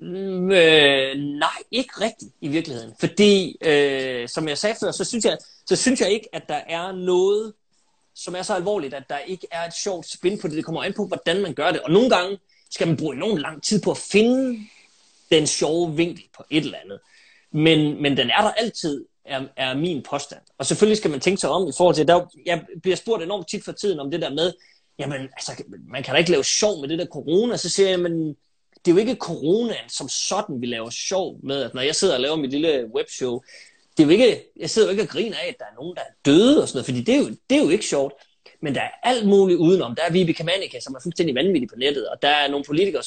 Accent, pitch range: native, 150-205 Hz